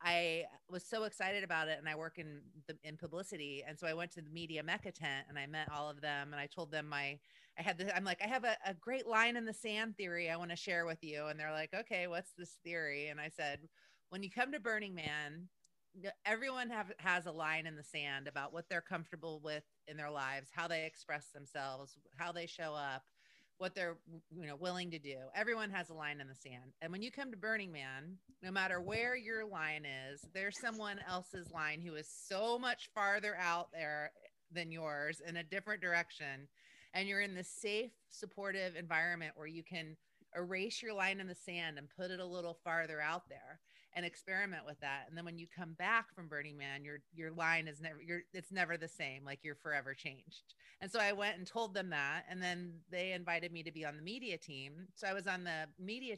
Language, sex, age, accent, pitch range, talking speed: English, female, 30-49, American, 150-190 Hz, 230 wpm